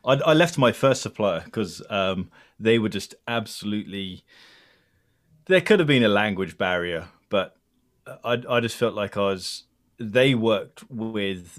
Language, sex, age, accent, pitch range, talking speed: English, male, 30-49, British, 90-120 Hz, 150 wpm